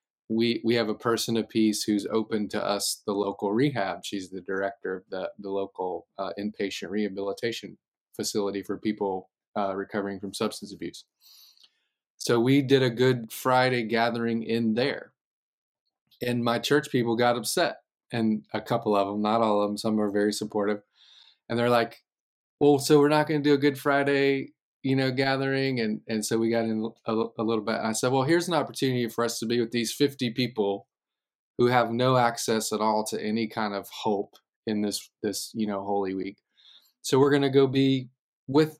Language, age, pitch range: English, 30-49, 105-125 Hz